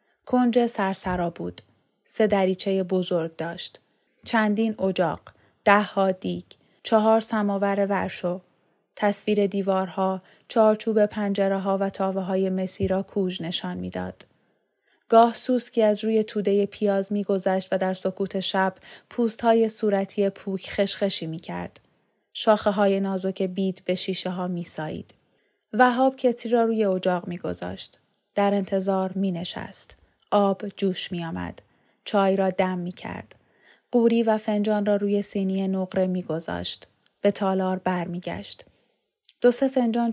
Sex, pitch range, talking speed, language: female, 185-210 Hz, 120 wpm, Persian